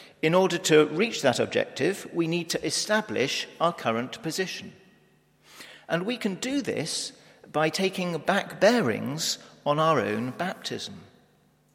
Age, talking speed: 50-69, 135 wpm